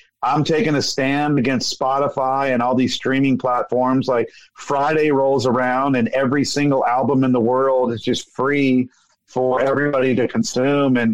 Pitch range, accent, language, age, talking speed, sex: 120-140 Hz, American, English, 50-69, 160 wpm, male